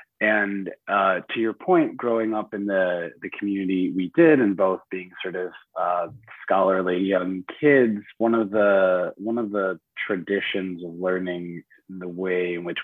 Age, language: 30-49, English